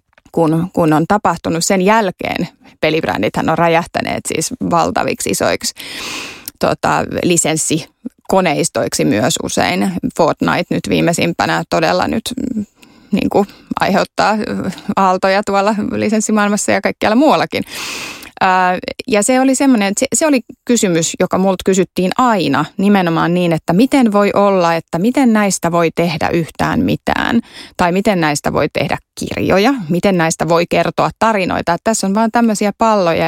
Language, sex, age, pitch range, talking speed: Finnish, female, 30-49, 170-220 Hz, 125 wpm